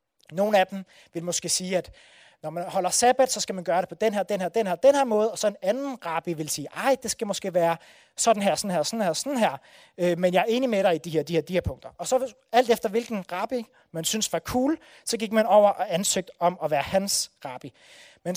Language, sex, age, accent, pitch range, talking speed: Danish, male, 30-49, native, 175-225 Hz, 270 wpm